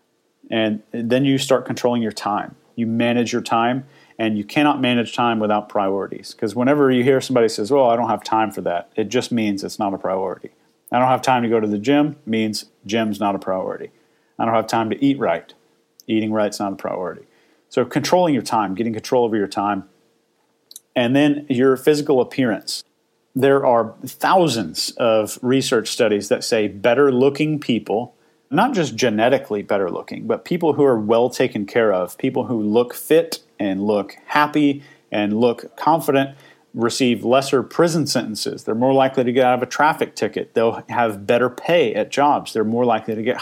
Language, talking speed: English, 190 wpm